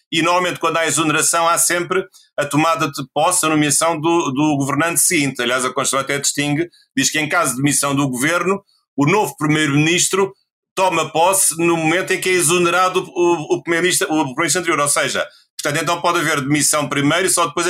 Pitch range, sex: 140-170 Hz, male